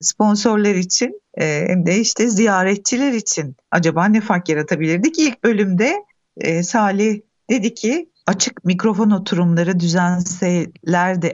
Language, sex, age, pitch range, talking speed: Turkish, female, 50-69, 170-220 Hz, 105 wpm